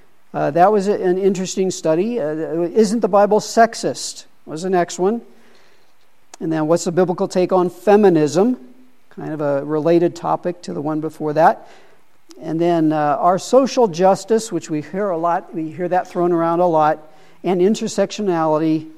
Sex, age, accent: male, 50-69, American